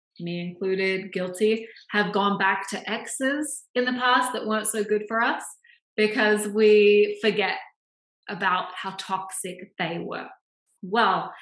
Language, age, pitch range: English, 20-39, 190-220 Hz